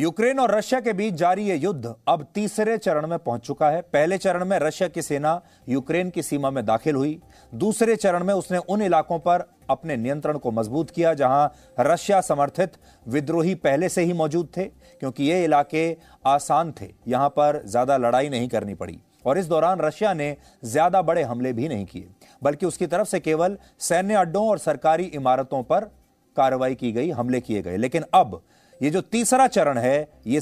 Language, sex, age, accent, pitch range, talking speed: English, male, 30-49, Indian, 135-180 Hz, 165 wpm